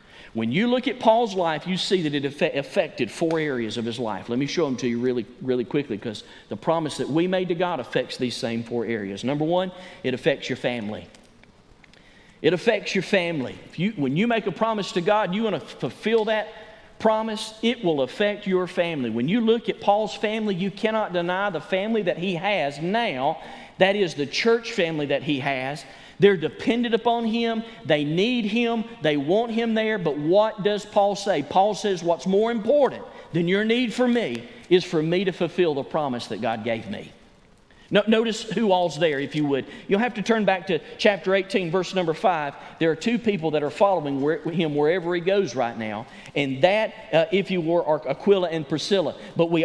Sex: male